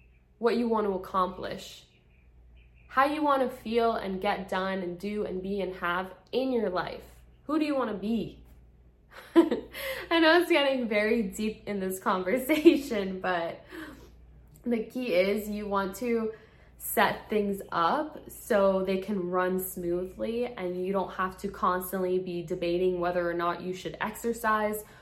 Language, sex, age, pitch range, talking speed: English, female, 10-29, 180-220 Hz, 160 wpm